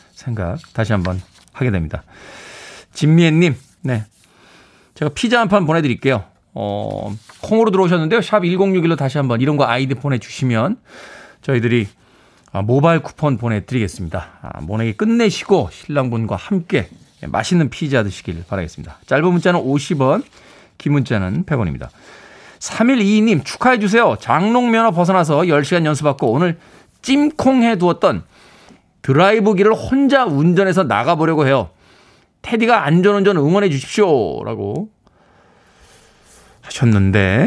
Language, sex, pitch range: Korean, male, 115-185 Hz